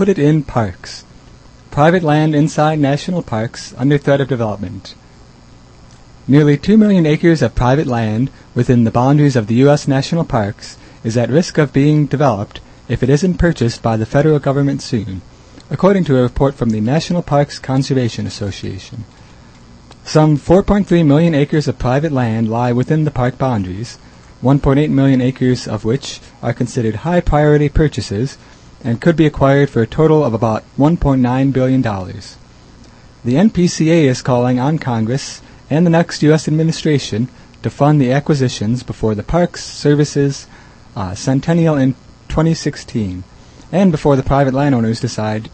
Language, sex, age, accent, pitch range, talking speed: English, male, 30-49, American, 115-150 Hz, 150 wpm